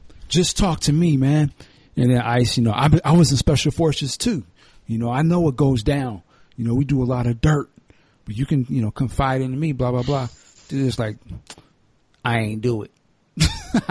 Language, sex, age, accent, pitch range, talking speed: English, male, 50-69, American, 110-140 Hz, 220 wpm